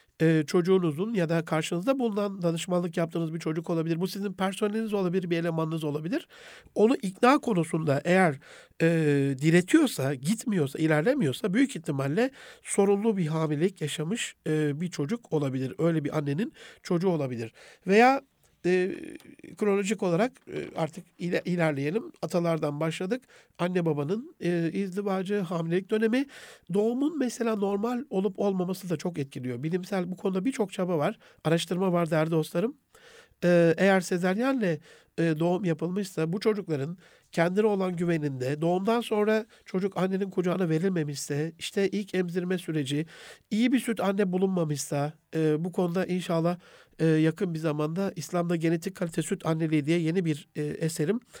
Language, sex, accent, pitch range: Turkish, male, native, 165-210 Hz